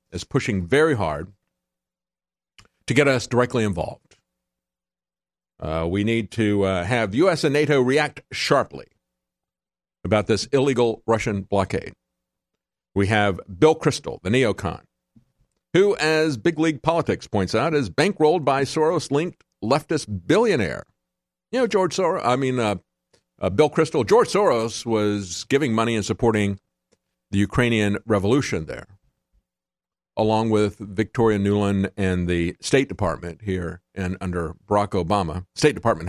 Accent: American